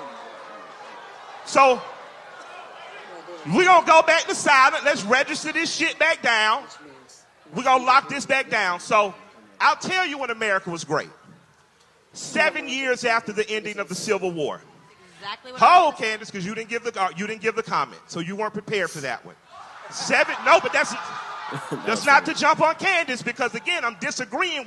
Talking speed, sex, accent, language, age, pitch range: 175 wpm, male, American, English, 40-59, 220-320 Hz